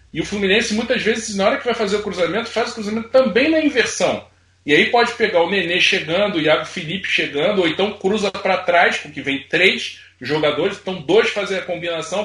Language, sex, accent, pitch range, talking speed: Portuguese, male, Brazilian, 145-205 Hz, 210 wpm